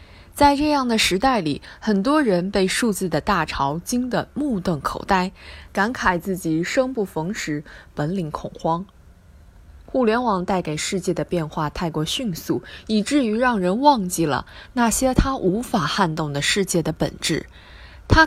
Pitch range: 160-235 Hz